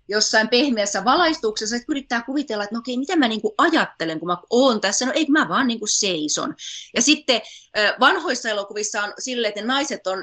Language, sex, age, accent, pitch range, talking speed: Finnish, female, 20-39, native, 180-230 Hz, 195 wpm